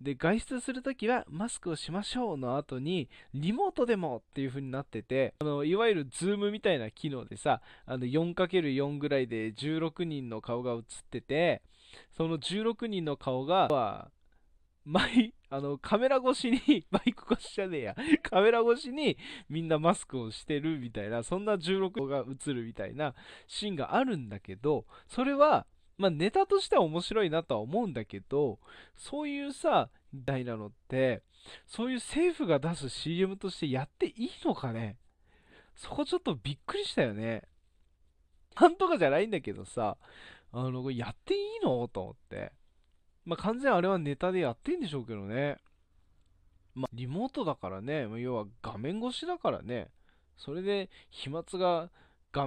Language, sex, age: Japanese, male, 20-39